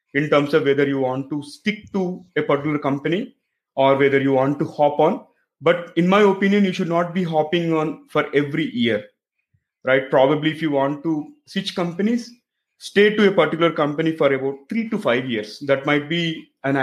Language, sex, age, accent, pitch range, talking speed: English, male, 30-49, Indian, 140-170 Hz, 195 wpm